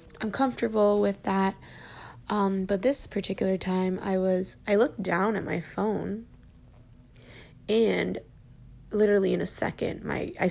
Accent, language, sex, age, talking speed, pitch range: American, English, female, 10-29, 135 wpm, 155-200 Hz